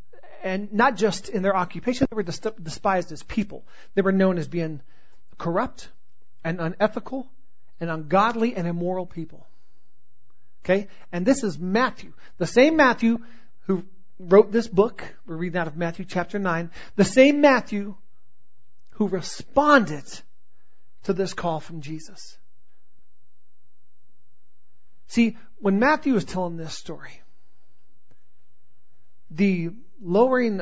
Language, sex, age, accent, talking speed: English, male, 40-59, American, 120 wpm